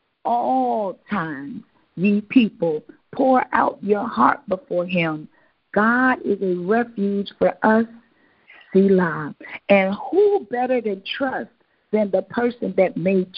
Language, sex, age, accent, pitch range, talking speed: English, female, 50-69, American, 190-245 Hz, 120 wpm